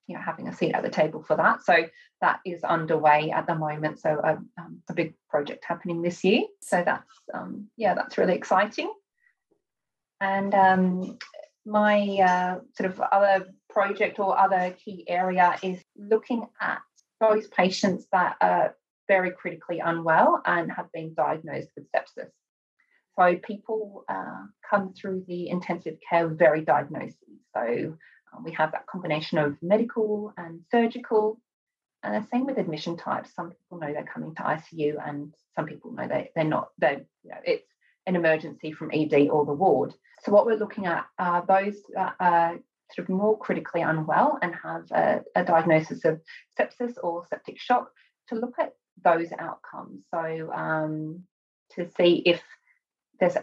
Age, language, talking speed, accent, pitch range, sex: 30-49, English, 165 wpm, British, 165-210 Hz, female